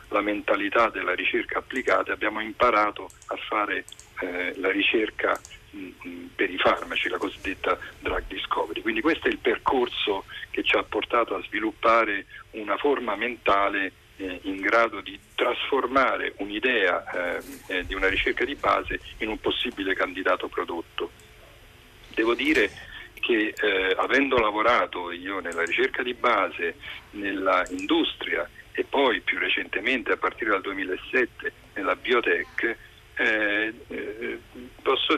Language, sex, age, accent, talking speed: Italian, male, 50-69, native, 130 wpm